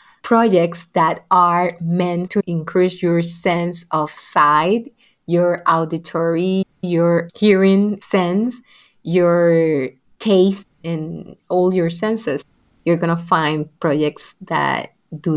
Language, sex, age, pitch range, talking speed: English, female, 30-49, 170-210 Hz, 110 wpm